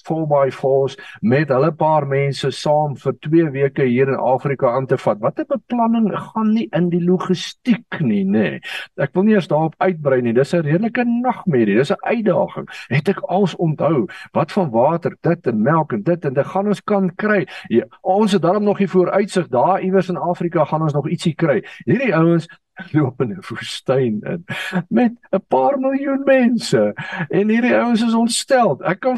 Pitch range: 175-240 Hz